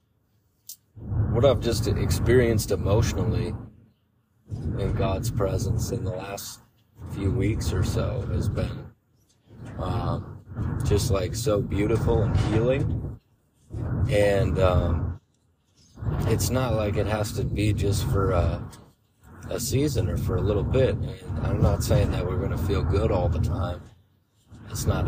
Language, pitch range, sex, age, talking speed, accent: English, 100-115 Hz, male, 30-49, 135 wpm, American